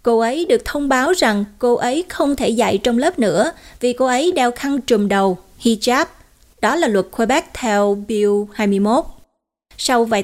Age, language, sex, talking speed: 20-39, Vietnamese, female, 180 wpm